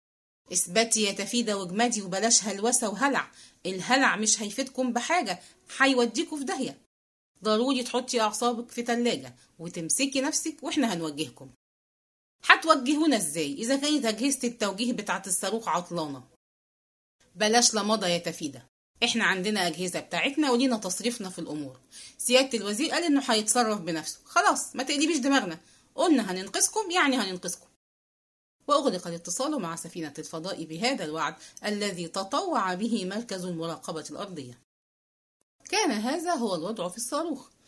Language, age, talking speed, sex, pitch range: English, 30-49, 125 wpm, female, 175-260 Hz